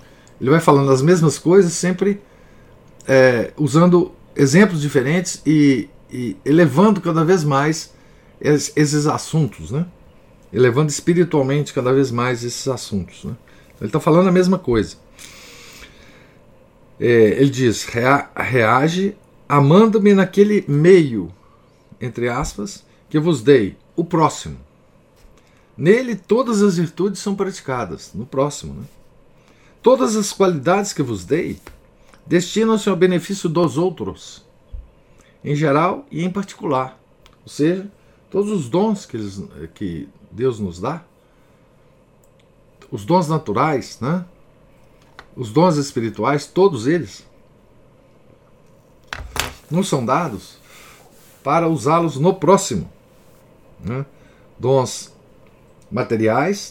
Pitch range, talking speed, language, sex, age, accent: 130-185 Hz, 110 wpm, Portuguese, male, 50-69, Brazilian